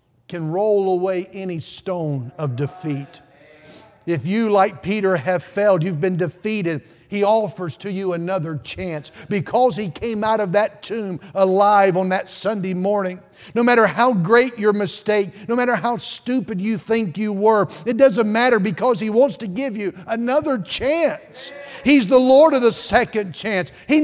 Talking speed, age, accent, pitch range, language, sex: 165 wpm, 50-69, American, 160-225 Hz, English, male